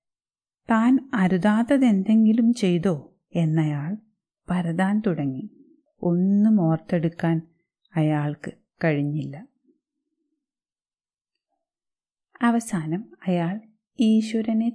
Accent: native